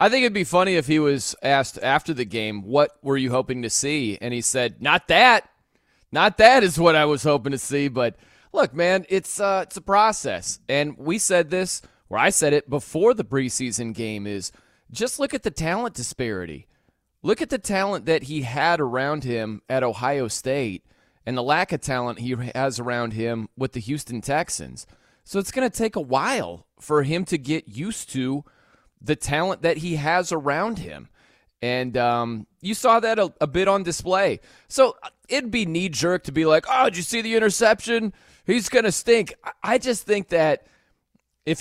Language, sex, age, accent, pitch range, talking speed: English, male, 30-49, American, 130-190 Hz, 195 wpm